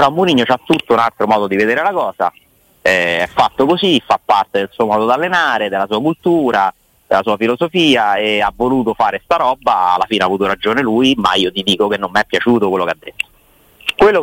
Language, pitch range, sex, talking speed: Italian, 100-130 Hz, male, 230 wpm